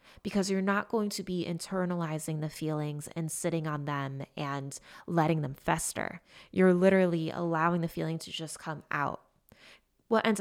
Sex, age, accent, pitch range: female, 20-39, American, 155-185 Hz